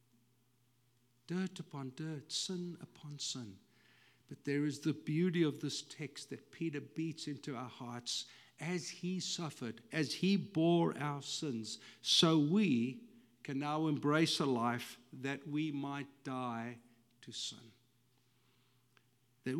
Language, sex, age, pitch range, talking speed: English, male, 60-79, 125-155 Hz, 130 wpm